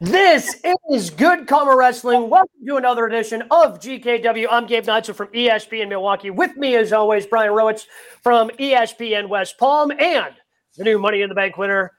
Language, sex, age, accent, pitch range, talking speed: English, male, 30-49, American, 220-295 Hz, 175 wpm